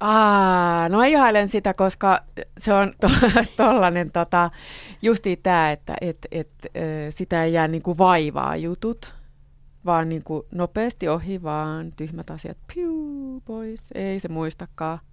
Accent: native